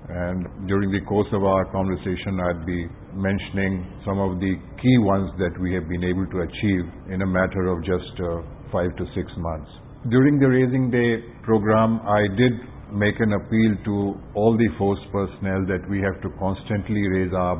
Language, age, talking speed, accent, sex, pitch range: English, 50-69, 185 wpm, Indian, male, 95-110 Hz